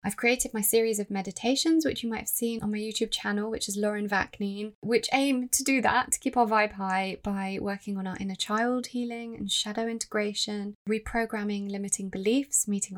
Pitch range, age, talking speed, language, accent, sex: 195-245 Hz, 20-39, 200 wpm, English, British, female